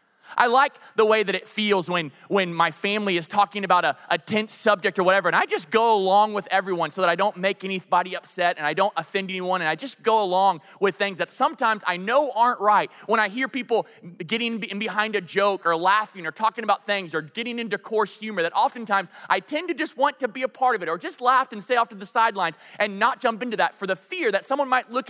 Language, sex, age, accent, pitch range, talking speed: English, male, 20-39, American, 185-250 Hz, 250 wpm